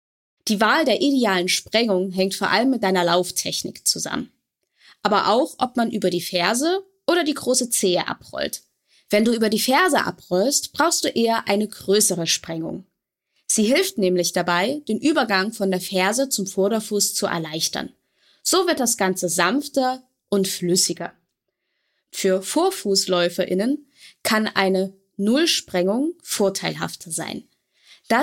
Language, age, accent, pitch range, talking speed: German, 20-39, German, 185-265 Hz, 135 wpm